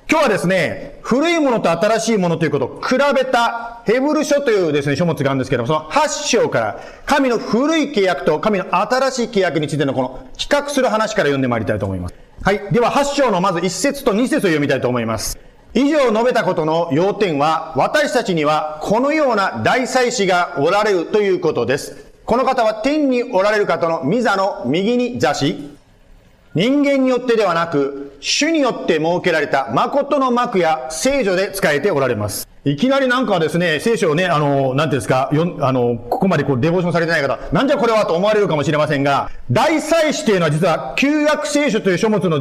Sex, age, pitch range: male, 40-59, 155-255 Hz